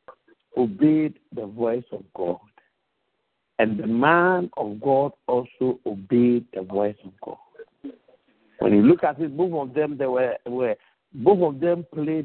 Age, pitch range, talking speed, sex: 60-79, 120-195 Hz, 150 wpm, male